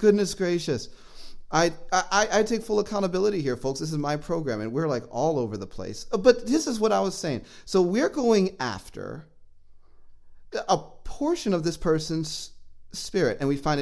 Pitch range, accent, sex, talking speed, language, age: 110-175 Hz, American, male, 180 wpm, English, 30-49